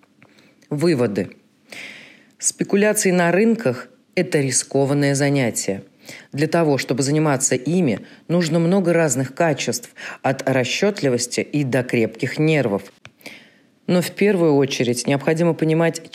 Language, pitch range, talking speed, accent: Russian, 125-165 Hz, 105 wpm, native